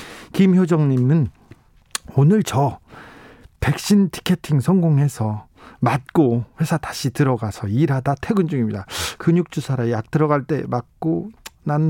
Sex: male